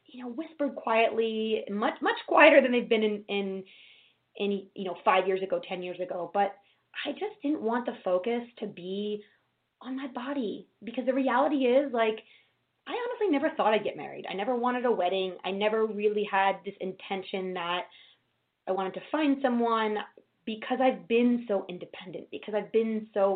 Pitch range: 190-235 Hz